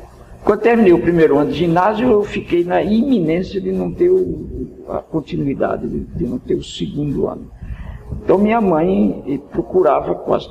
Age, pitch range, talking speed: 60-79, 130-195 Hz, 160 wpm